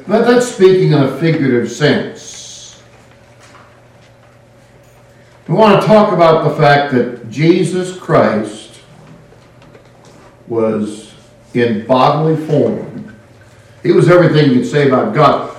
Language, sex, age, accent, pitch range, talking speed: English, male, 60-79, American, 120-160 Hz, 110 wpm